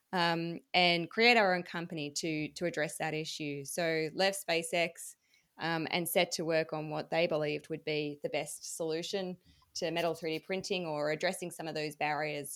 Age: 20-39